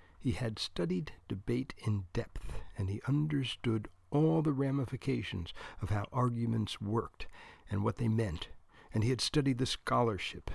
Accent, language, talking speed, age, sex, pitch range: American, English, 150 wpm, 60-79, male, 90-125 Hz